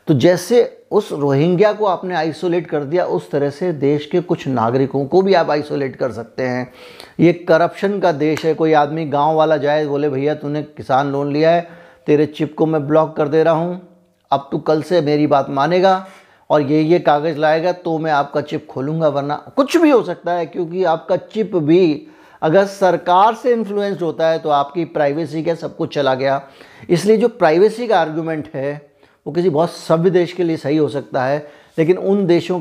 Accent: native